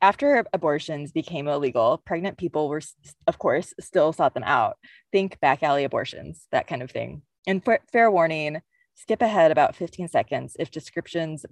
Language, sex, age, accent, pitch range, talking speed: English, female, 20-39, American, 155-200 Hz, 160 wpm